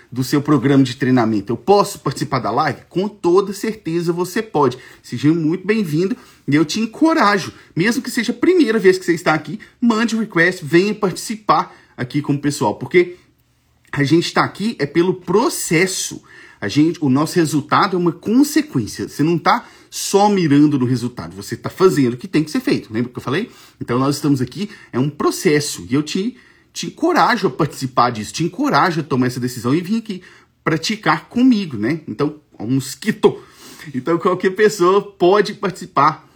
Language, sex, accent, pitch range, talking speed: English, male, Brazilian, 140-195 Hz, 185 wpm